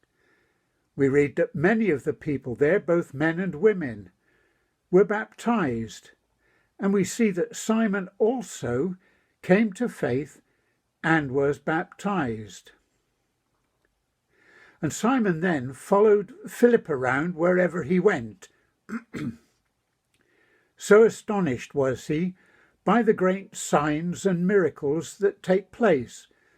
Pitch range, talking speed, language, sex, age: 155-205 Hz, 110 wpm, English, male, 60-79